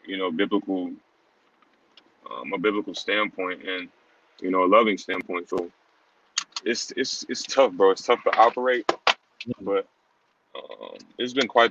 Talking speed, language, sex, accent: 145 wpm, English, male, American